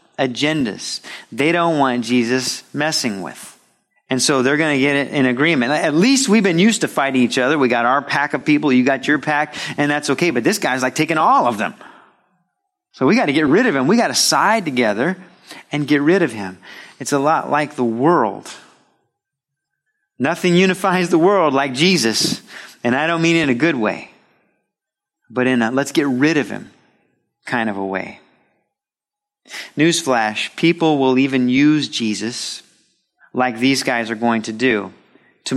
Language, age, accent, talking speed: English, 30-49, American, 185 wpm